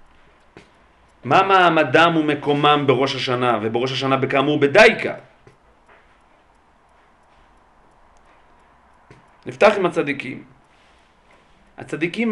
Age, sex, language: 40-59, male, Hebrew